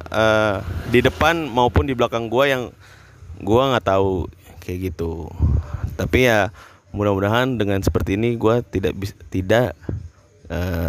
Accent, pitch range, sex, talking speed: native, 90-115 Hz, male, 125 wpm